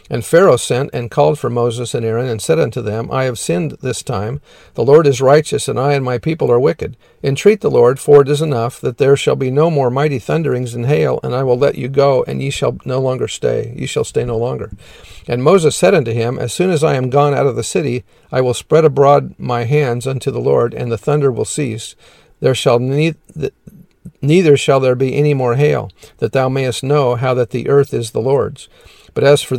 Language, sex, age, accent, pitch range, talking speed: English, male, 50-69, American, 120-145 Hz, 235 wpm